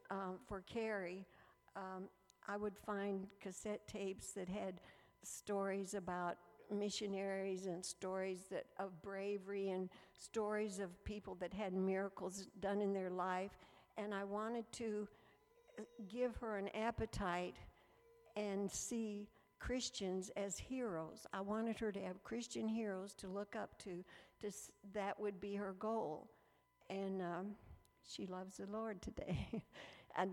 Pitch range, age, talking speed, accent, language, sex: 185-205 Hz, 60-79, 135 wpm, American, English, female